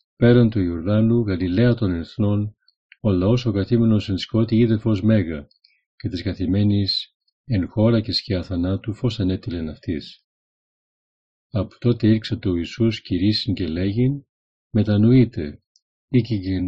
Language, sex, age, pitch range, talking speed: Greek, male, 40-59, 90-115 Hz, 150 wpm